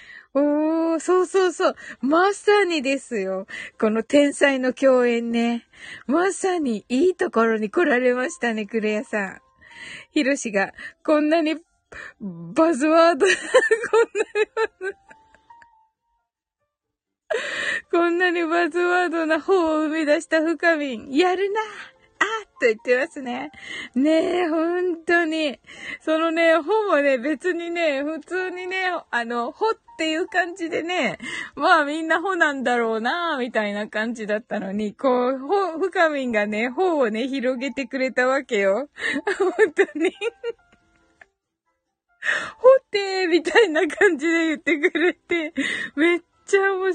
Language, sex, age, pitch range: Japanese, female, 20-39, 265-375 Hz